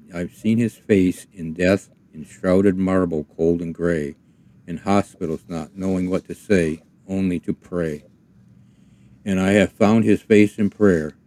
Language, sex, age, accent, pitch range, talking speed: English, male, 60-79, American, 85-100 Hz, 160 wpm